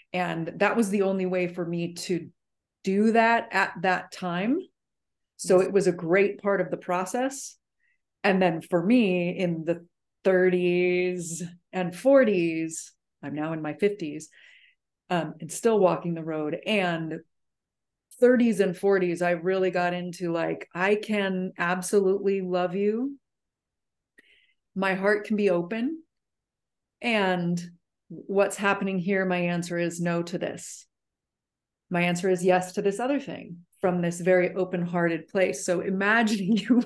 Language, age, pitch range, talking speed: English, 30-49, 175-215 Hz, 140 wpm